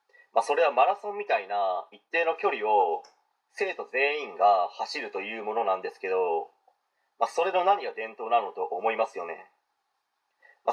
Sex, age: male, 30-49